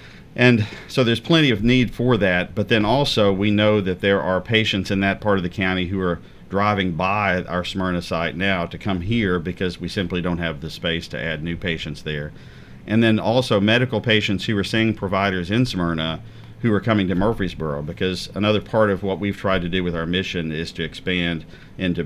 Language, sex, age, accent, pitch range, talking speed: English, male, 50-69, American, 85-100 Hz, 210 wpm